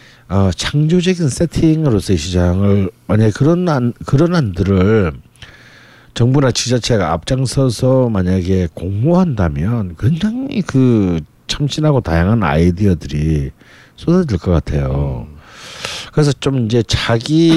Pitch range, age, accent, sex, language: 95-140 Hz, 50-69, native, male, Korean